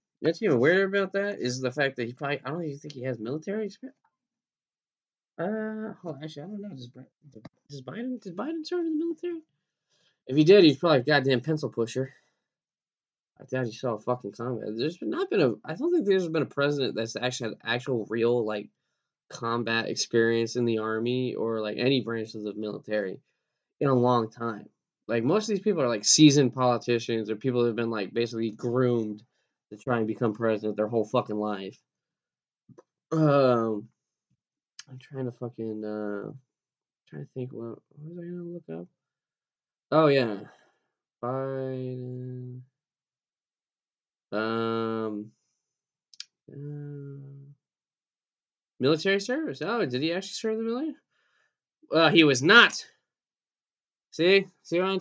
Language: English